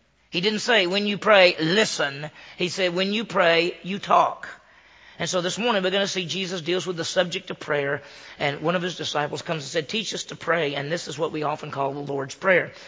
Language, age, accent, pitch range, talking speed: English, 40-59, American, 155-195 Hz, 240 wpm